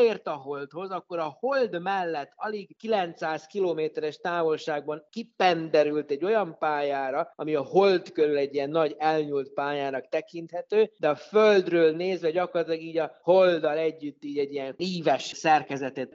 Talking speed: 145 wpm